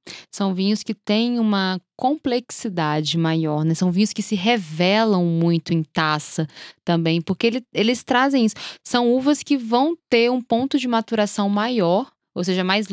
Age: 10-29